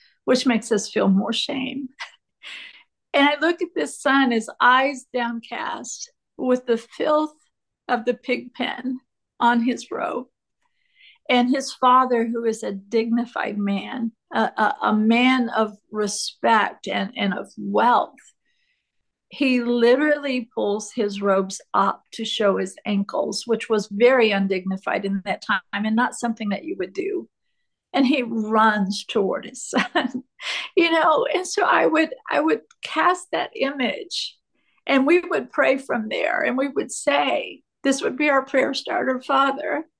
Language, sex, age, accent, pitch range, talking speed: English, female, 50-69, American, 235-315 Hz, 150 wpm